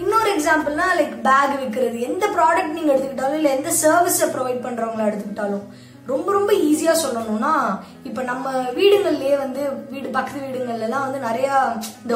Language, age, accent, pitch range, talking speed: Tamil, 20-39, native, 235-310 Hz, 135 wpm